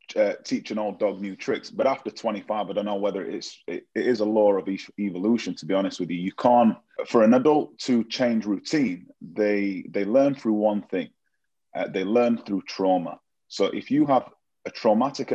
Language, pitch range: English, 95-120 Hz